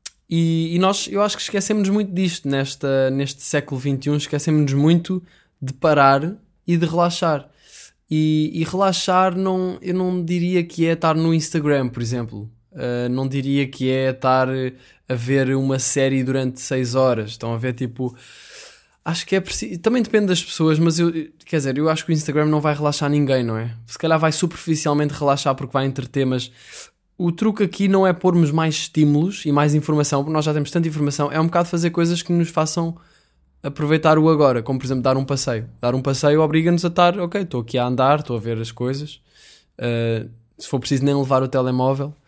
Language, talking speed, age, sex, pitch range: Portuguese, 200 wpm, 20-39, male, 130-165 Hz